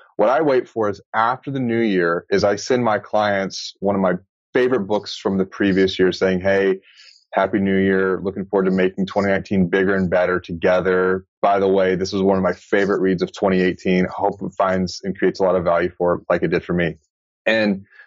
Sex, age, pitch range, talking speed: male, 30-49, 95-110 Hz, 225 wpm